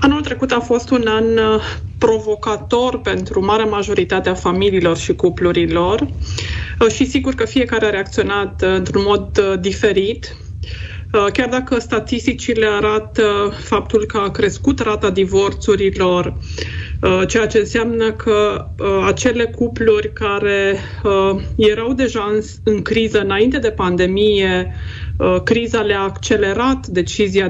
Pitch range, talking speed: 185-230 Hz, 135 wpm